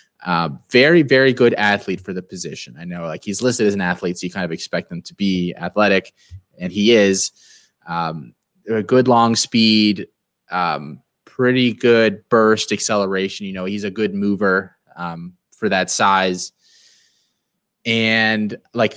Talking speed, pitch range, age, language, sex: 160 wpm, 90-115 Hz, 20-39, English, male